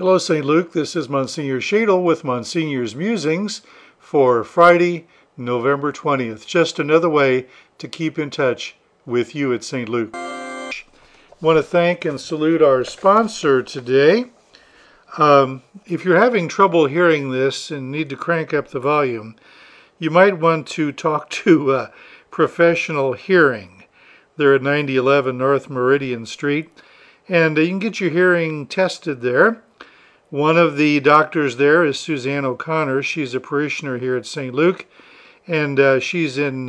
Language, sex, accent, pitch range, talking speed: English, male, American, 130-165 Hz, 150 wpm